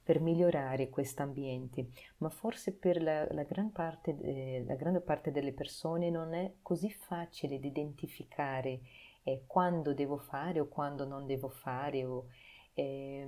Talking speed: 155 wpm